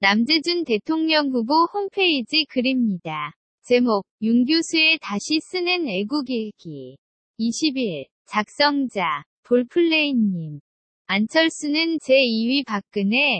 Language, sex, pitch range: Korean, female, 220-310 Hz